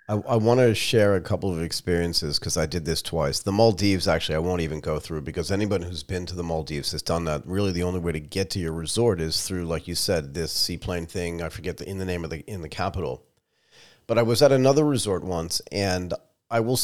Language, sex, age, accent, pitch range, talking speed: English, male, 40-59, American, 90-120 Hz, 250 wpm